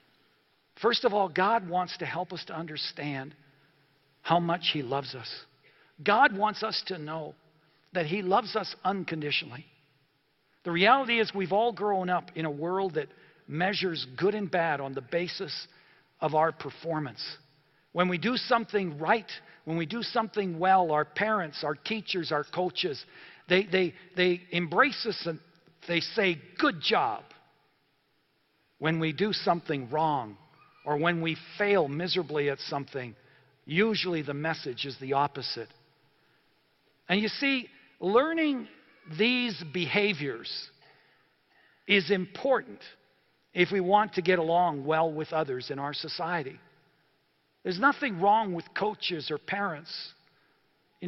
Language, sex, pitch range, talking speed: English, male, 150-195 Hz, 140 wpm